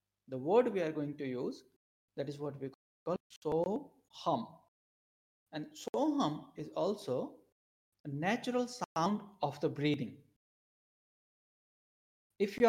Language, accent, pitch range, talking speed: English, Indian, 140-205 Hz, 130 wpm